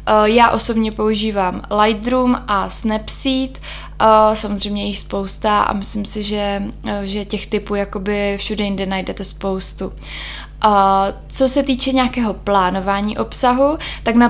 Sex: female